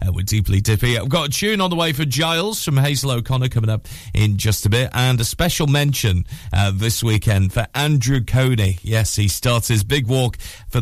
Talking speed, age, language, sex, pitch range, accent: 210 wpm, 40-59, English, male, 100-140 Hz, British